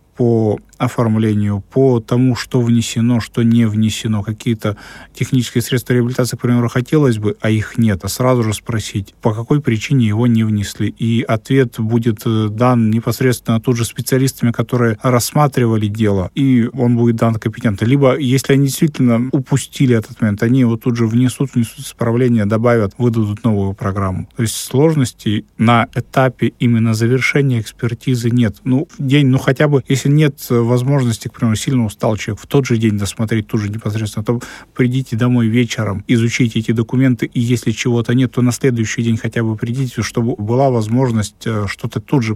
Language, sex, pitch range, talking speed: Russian, male, 110-125 Hz, 170 wpm